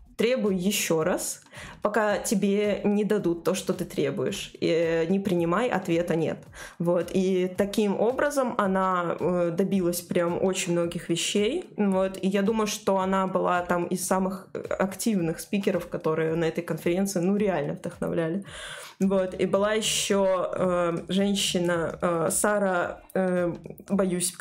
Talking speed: 135 wpm